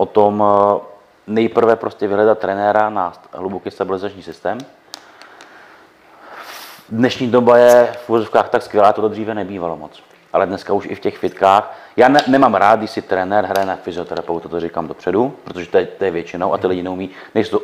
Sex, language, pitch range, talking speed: male, Czech, 90-110 Hz, 175 wpm